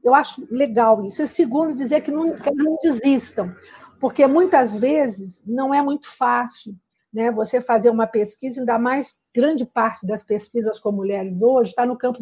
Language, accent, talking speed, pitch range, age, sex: Portuguese, Brazilian, 185 wpm, 225-290 Hz, 50-69, female